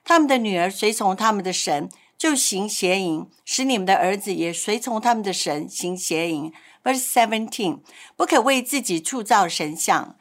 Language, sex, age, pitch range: Chinese, female, 60-79, 190-270 Hz